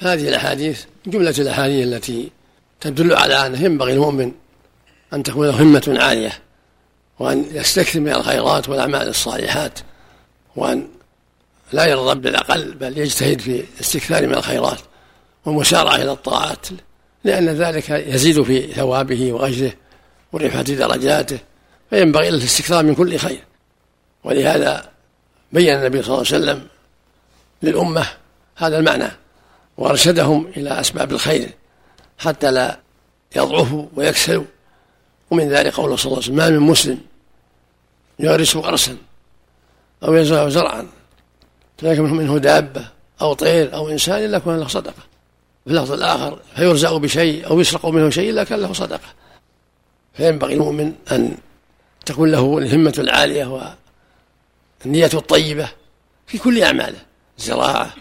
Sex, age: male, 60-79